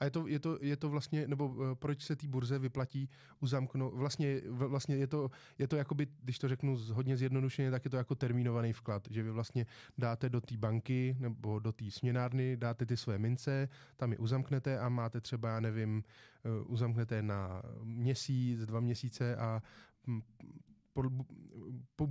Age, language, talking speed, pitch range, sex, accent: 20-39, Czech, 175 wpm, 115-130 Hz, male, native